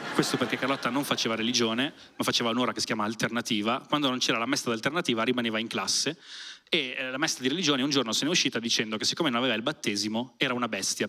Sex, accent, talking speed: male, native, 235 wpm